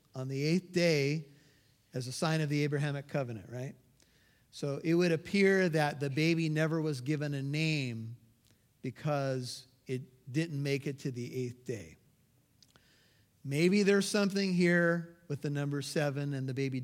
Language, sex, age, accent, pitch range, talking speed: English, male, 40-59, American, 135-160 Hz, 155 wpm